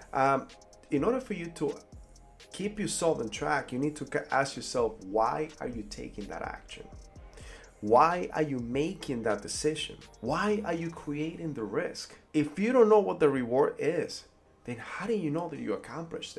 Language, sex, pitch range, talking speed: English, male, 125-180 Hz, 180 wpm